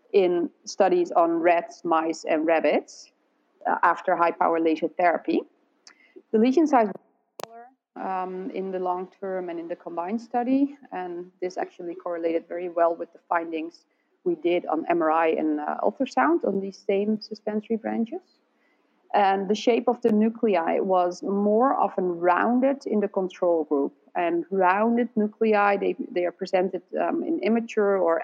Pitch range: 180-245 Hz